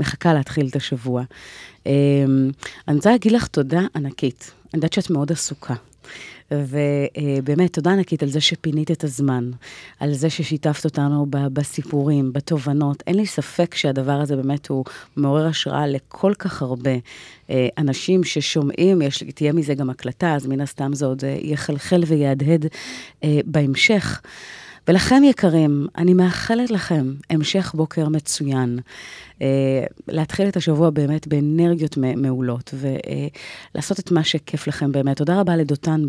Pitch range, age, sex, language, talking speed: 140-165 Hz, 30-49, female, Hebrew, 135 wpm